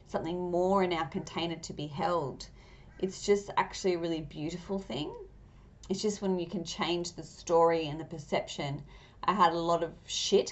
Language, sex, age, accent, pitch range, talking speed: English, female, 30-49, Australian, 155-180 Hz, 185 wpm